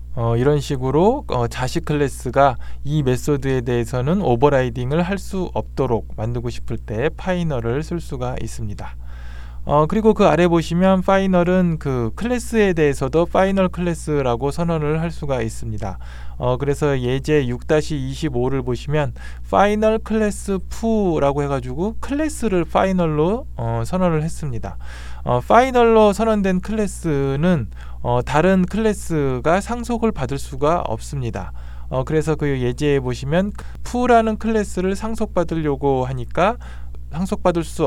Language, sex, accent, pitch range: Korean, male, native, 120-180 Hz